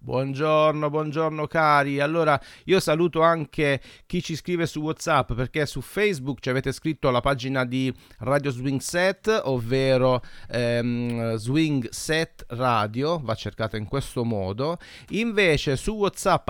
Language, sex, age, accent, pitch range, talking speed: Italian, male, 30-49, native, 130-180 Hz, 135 wpm